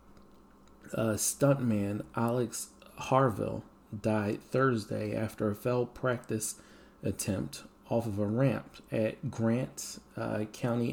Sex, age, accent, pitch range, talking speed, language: male, 30-49, American, 100-120 Hz, 110 wpm, English